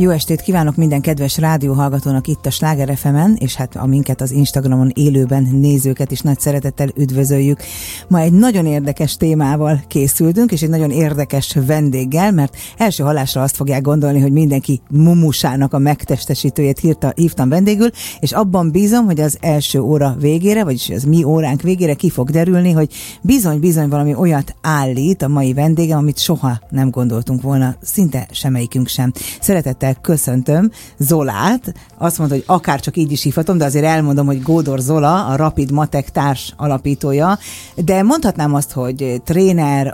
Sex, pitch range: female, 135-165 Hz